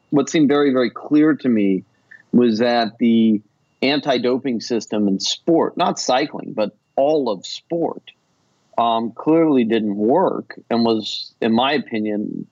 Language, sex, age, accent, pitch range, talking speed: English, male, 40-59, American, 110-130 Hz, 145 wpm